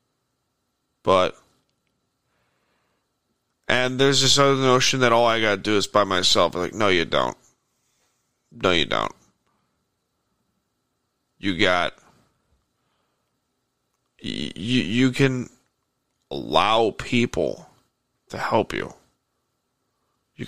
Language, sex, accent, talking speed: English, male, American, 95 wpm